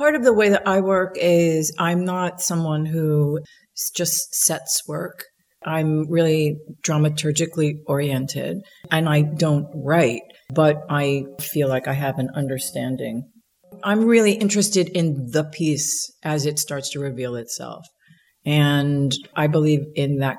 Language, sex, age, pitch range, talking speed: English, female, 40-59, 135-160 Hz, 140 wpm